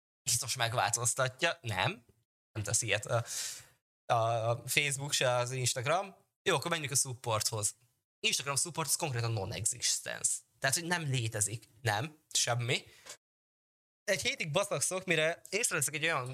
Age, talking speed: 20-39, 130 wpm